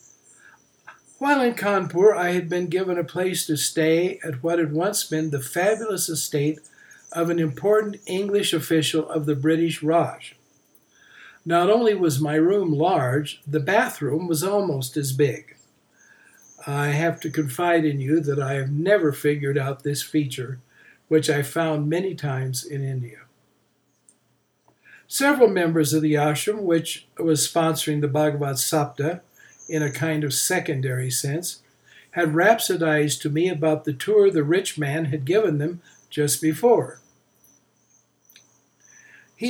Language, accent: English, American